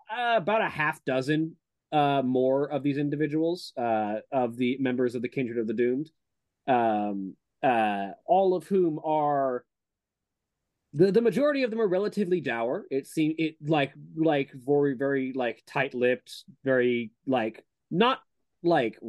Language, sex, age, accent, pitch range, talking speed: English, male, 30-49, American, 110-140 Hz, 150 wpm